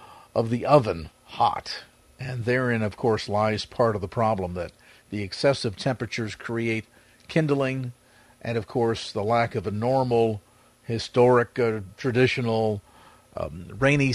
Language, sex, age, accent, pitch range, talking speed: English, male, 50-69, American, 110-125 Hz, 135 wpm